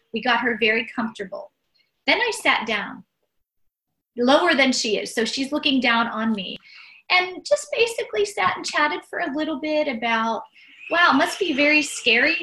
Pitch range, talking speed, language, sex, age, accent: 215-290 Hz, 175 wpm, English, female, 30-49, American